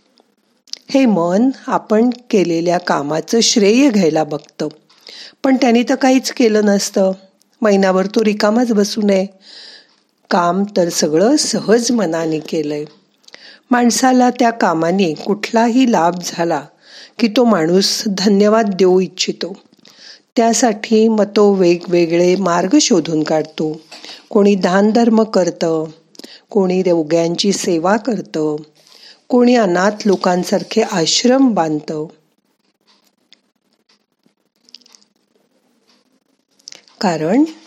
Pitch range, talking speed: 170-230 Hz, 95 wpm